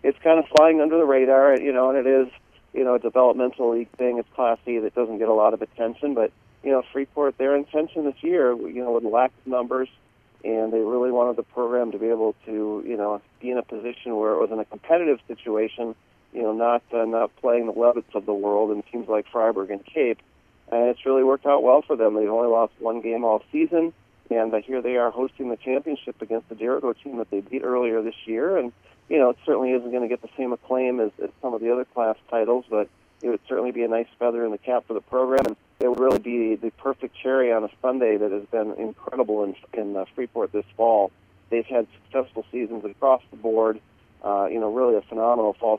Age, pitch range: 40-59, 110-130 Hz